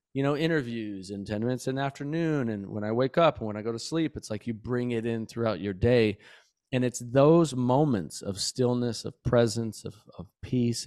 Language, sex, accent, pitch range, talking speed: English, male, American, 115-140 Hz, 220 wpm